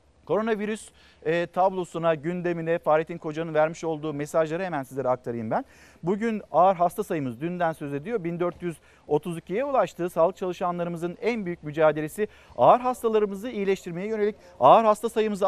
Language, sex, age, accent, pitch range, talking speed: Turkish, male, 50-69, native, 160-210 Hz, 130 wpm